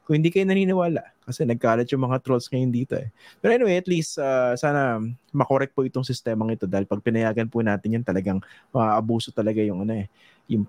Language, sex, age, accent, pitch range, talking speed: English, male, 20-39, Filipino, 105-140 Hz, 210 wpm